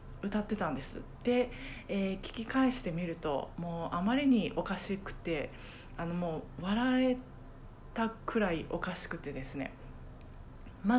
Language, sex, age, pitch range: Japanese, female, 20-39, 185-250 Hz